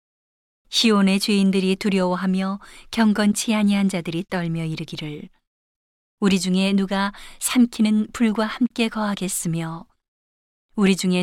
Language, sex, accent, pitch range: Korean, female, native, 180-210 Hz